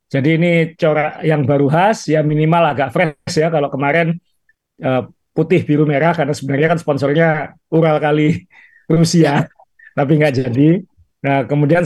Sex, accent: male, native